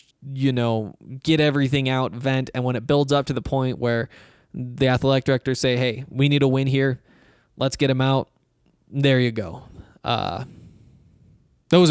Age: 20-39